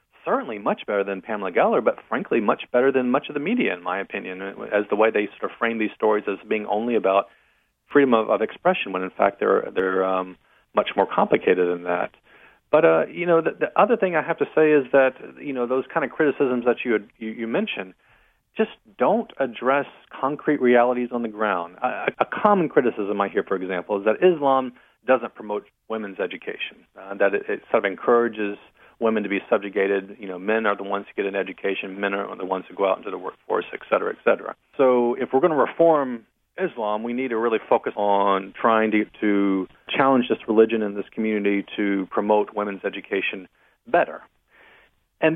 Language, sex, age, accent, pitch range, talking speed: English, male, 40-59, American, 100-130 Hz, 210 wpm